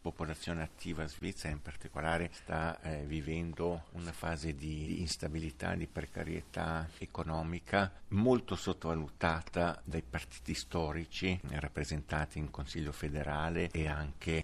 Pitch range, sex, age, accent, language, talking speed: 75-85 Hz, male, 50-69, native, Italian, 110 wpm